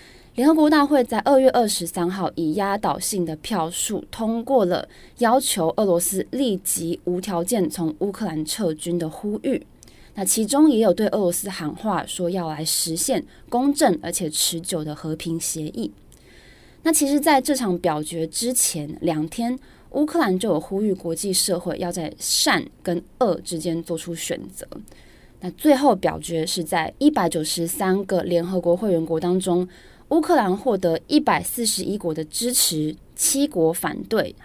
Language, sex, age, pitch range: Chinese, female, 20-39, 170-225 Hz